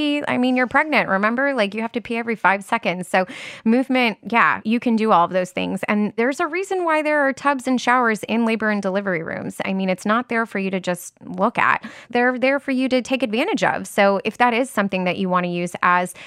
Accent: American